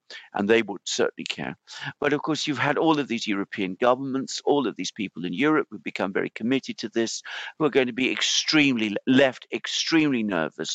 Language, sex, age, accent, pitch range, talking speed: English, male, 50-69, British, 110-150 Hz, 200 wpm